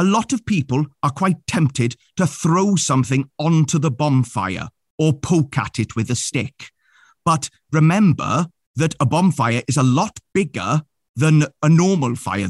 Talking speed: 160 wpm